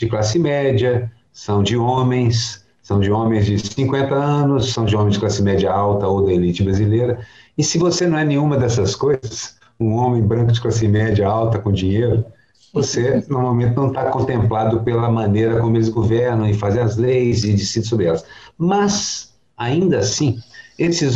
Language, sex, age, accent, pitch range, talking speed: Portuguese, male, 50-69, Brazilian, 105-130 Hz, 175 wpm